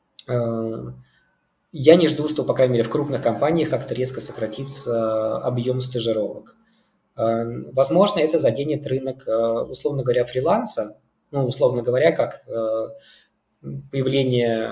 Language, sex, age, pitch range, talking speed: Russian, male, 20-39, 115-135 Hz, 110 wpm